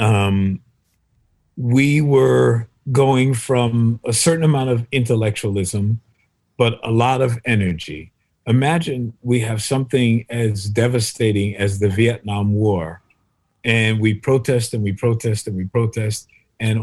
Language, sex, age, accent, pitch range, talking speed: Spanish, male, 50-69, American, 105-125 Hz, 120 wpm